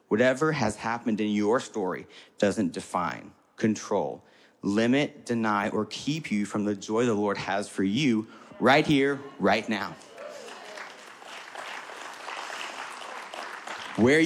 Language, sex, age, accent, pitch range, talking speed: English, male, 30-49, American, 105-135 Hz, 115 wpm